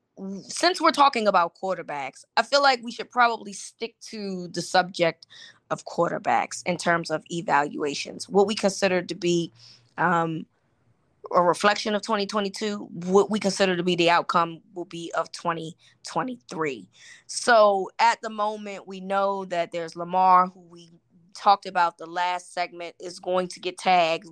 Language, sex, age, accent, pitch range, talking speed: English, female, 20-39, American, 165-195 Hz, 155 wpm